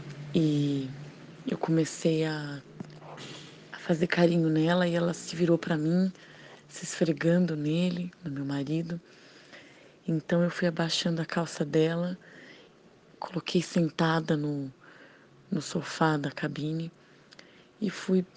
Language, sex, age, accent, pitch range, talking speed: Portuguese, female, 20-39, Brazilian, 155-175 Hz, 115 wpm